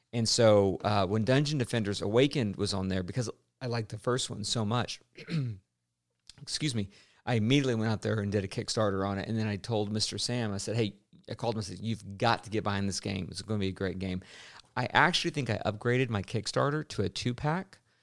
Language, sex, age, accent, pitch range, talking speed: English, male, 40-59, American, 105-130 Hz, 230 wpm